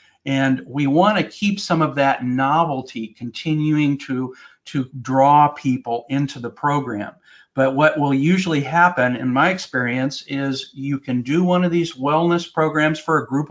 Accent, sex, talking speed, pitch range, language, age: American, male, 165 wpm, 130-160 Hz, English, 50-69